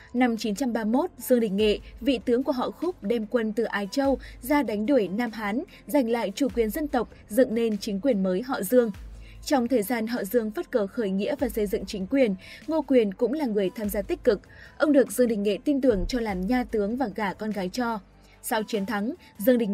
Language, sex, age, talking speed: Vietnamese, female, 20-39, 235 wpm